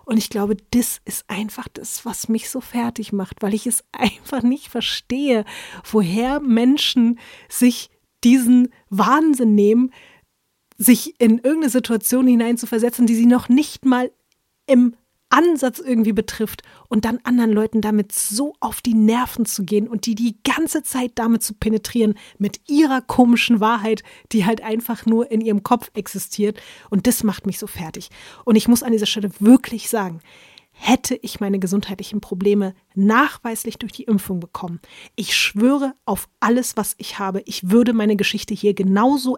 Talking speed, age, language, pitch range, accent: 160 wpm, 30-49, German, 210-245 Hz, German